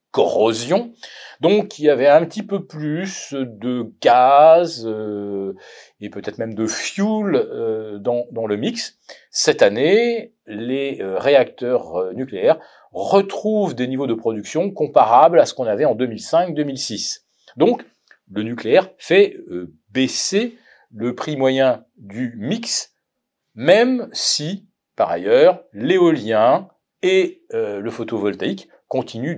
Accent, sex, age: French, male, 40-59